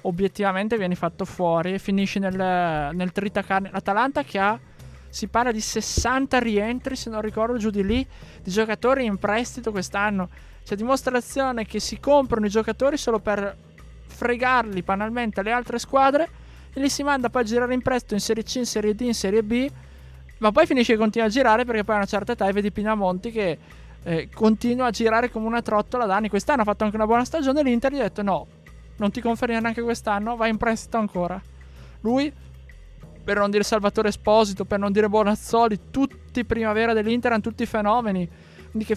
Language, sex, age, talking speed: Italian, male, 20-39, 190 wpm